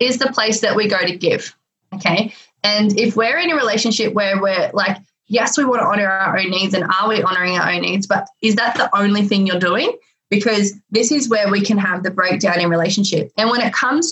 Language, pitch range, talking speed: English, 200-255 Hz, 240 wpm